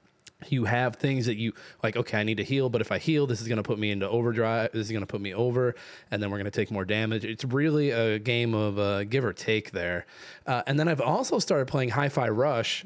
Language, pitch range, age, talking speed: English, 110-145 Hz, 20-39, 265 wpm